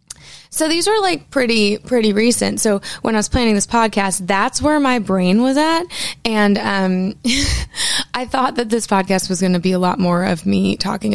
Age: 20-39